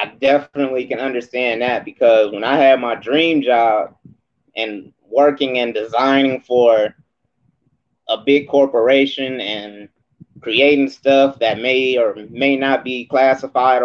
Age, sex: 30-49, male